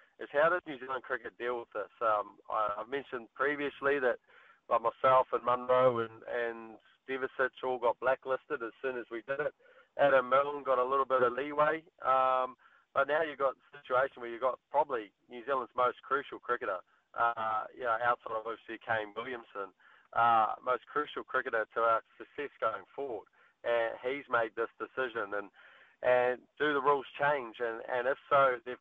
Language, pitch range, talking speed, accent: English, 120-135 Hz, 175 wpm, Australian